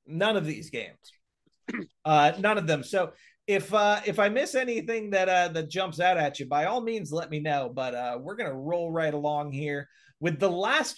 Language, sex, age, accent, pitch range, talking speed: English, male, 30-49, American, 150-195 Hz, 220 wpm